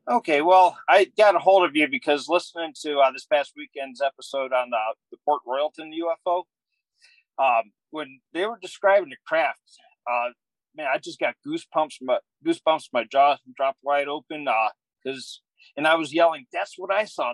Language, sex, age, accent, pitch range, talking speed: English, male, 40-59, American, 135-180 Hz, 190 wpm